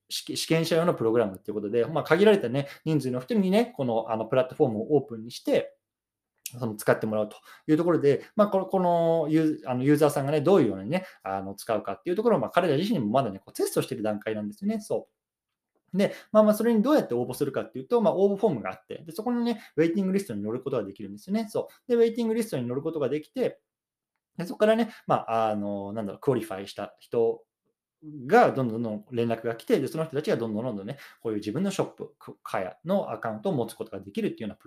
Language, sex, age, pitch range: Japanese, male, 20-39, 110-175 Hz